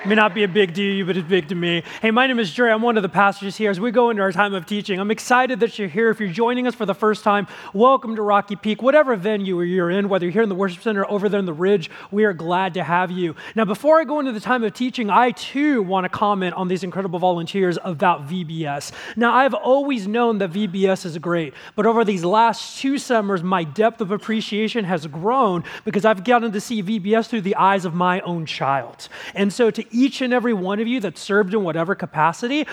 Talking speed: 255 wpm